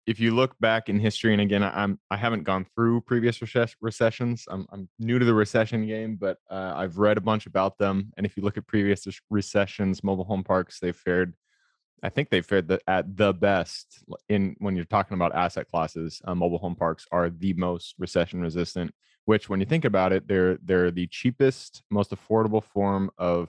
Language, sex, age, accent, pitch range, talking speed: English, male, 20-39, American, 95-105 Hz, 205 wpm